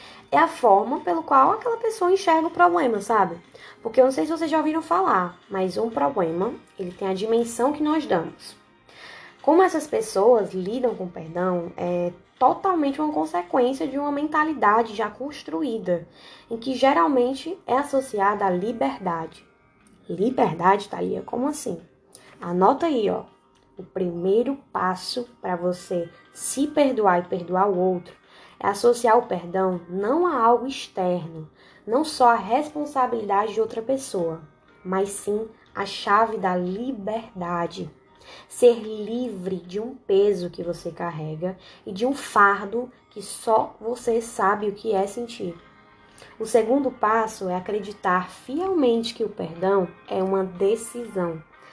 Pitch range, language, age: 185-255 Hz, Portuguese, 10-29